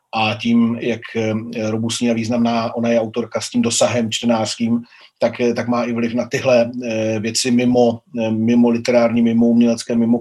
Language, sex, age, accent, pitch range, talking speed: Czech, male, 40-59, native, 115-125 Hz, 160 wpm